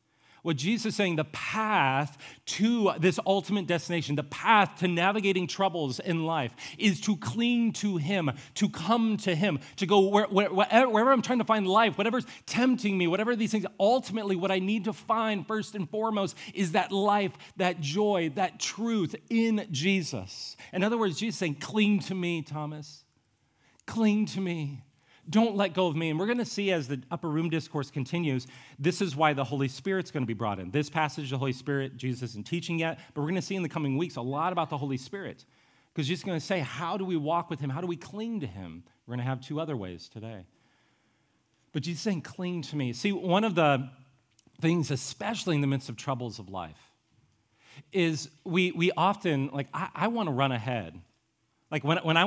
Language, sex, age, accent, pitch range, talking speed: English, male, 40-59, American, 135-195 Hz, 210 wpm